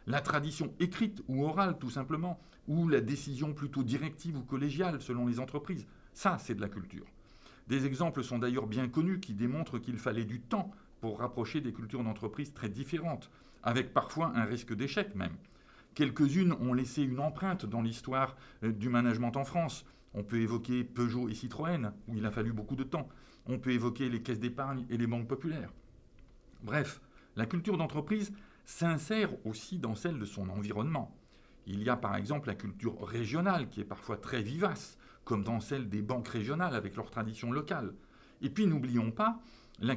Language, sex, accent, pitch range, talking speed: French, male, French, 115-160 Hz, 180 wpm